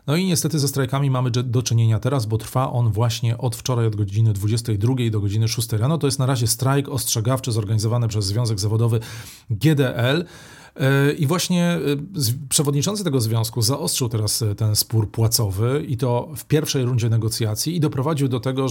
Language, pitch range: Polish, 110-135 Hz